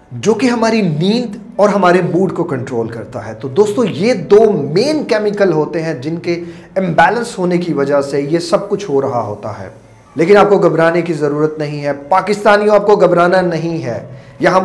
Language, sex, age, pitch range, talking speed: Urdu, male, 40-59, 150-210 Hz, 195 wpm